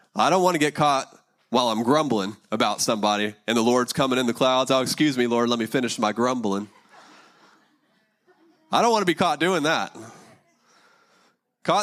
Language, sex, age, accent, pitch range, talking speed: English, male, 30-49, American, 105-140 Hz, 185 wpm